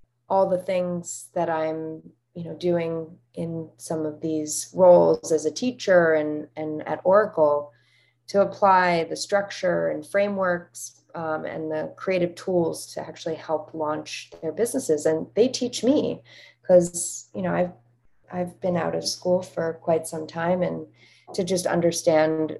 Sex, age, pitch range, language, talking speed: female, 30-49, 150-175 Hz, English, 155 wpm